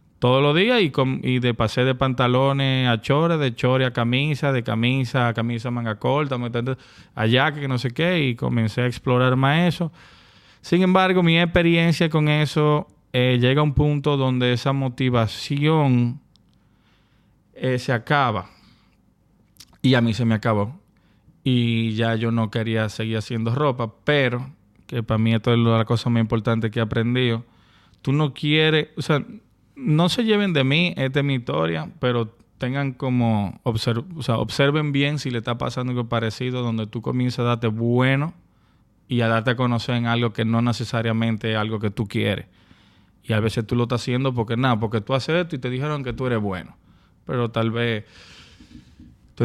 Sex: male